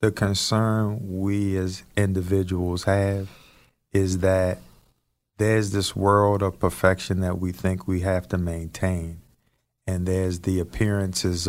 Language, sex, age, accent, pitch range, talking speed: English, male, 40-59, American, 95-115 Hz, 125 wpm